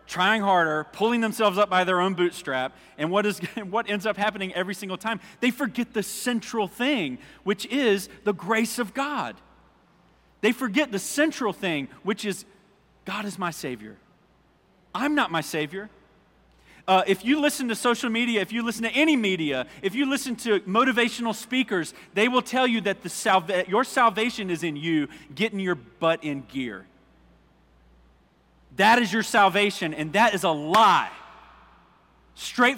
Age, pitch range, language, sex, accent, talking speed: 30-49, 175-240 Hz, English, male, American, 160 wpm